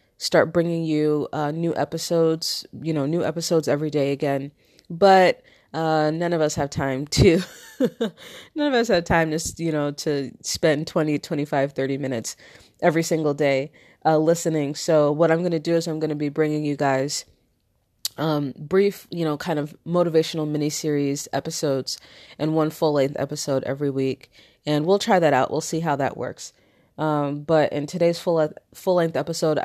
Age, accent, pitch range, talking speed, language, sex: 30-49, American, 145-165 Hz, 180 wpm, English, female